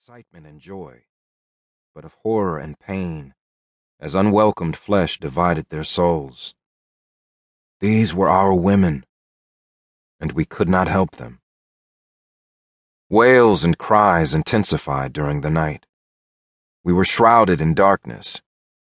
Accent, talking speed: American, 115 wpm